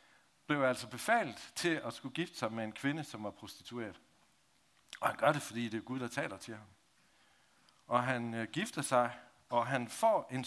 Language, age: Danish, 60-79